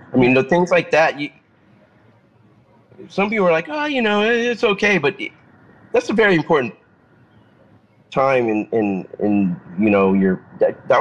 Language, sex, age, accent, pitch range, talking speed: English, male, 30-49, American, 105-135 Hz, 165 wpm